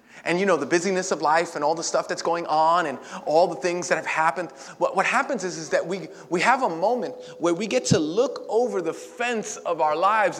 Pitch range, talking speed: 180-275 Hz, 240 wpm